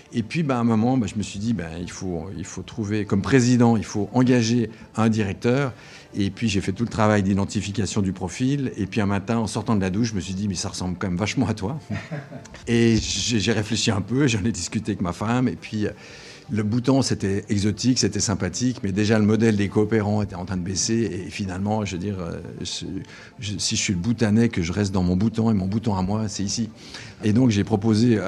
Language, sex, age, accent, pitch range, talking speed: French, male, 50-69, French, 100-120 Hz, 240 wpm